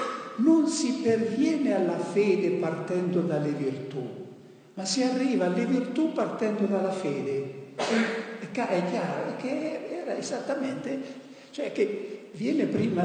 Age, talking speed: 60-79, 125 wpm